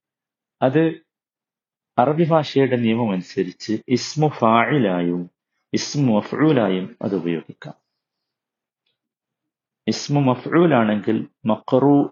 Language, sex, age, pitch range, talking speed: Malayalam, male, 50-69, 105-130 Hz, 70 wpm